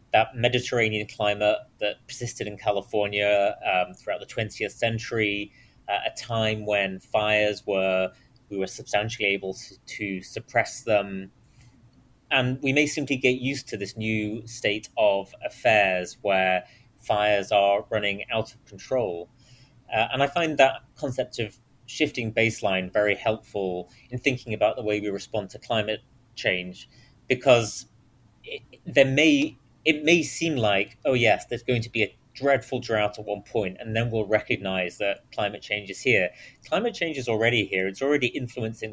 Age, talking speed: 30-49, 160 wpm